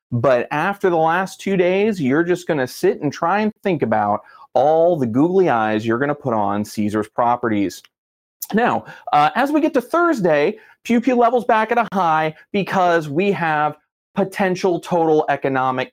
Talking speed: 175 wpm